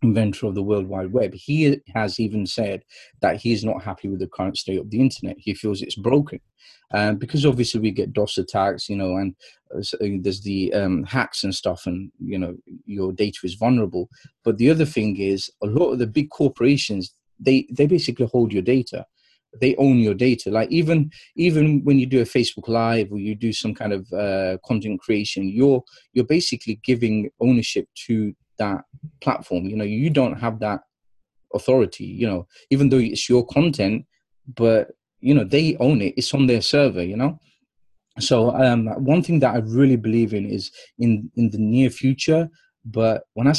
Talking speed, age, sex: 195 wpm, 30-49, male